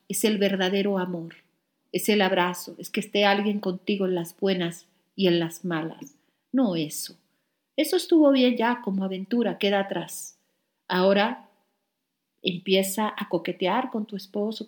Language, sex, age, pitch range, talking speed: Spanish, female, 50-69, 195-255 Hz, 145 wpm